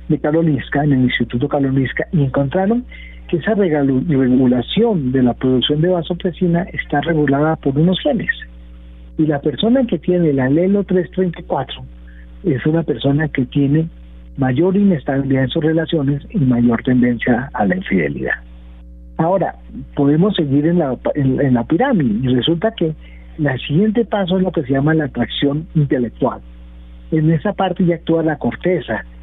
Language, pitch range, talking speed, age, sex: Spanish, 125-175 Hz, 150 wpm, 50-69, male